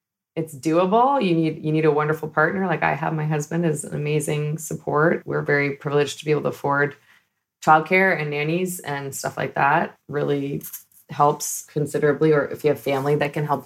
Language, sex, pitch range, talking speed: English, female, 145-185 Hz, 195 wpm